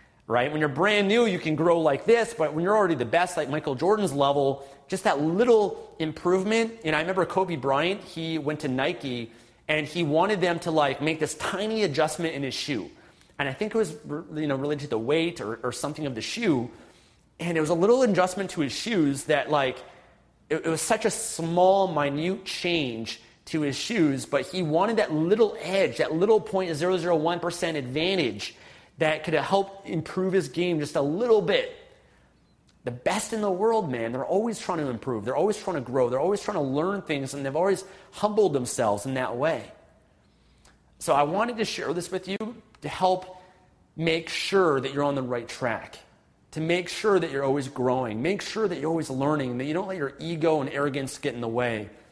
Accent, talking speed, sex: American, 205 wpm, male